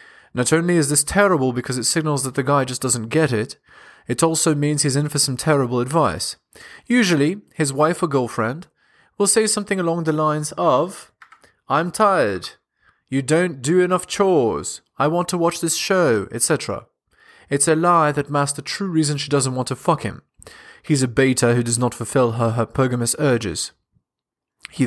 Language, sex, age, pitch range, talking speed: English, male, 20-39, 125-165 Hz, 180 wpm